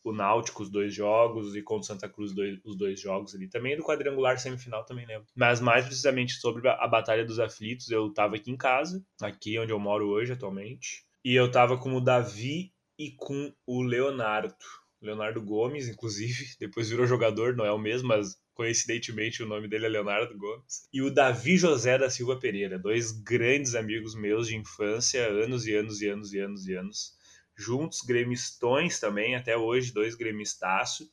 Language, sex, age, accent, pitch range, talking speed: Portuguese, male, 20-39, Brazilian, 110-130 Hz, 185 wpm